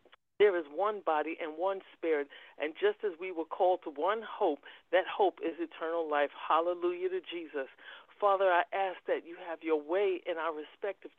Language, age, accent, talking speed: English, 50-69, American, 190 wpm